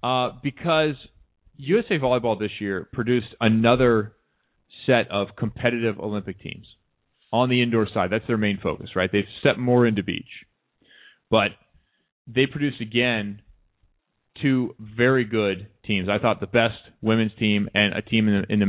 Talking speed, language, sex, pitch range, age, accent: 155 wpm, English, male, 95-120 Hz, 30-49, American